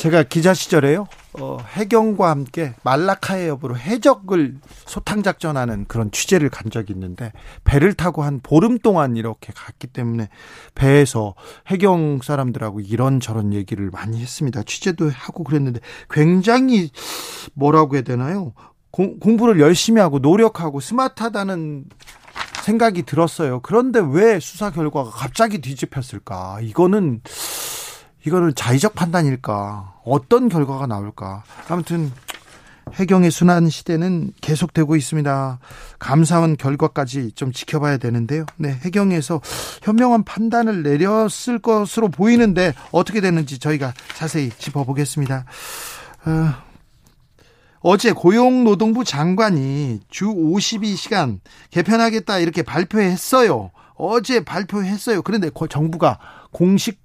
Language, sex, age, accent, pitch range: Korean, male, 40-59, native, 135-195 Hz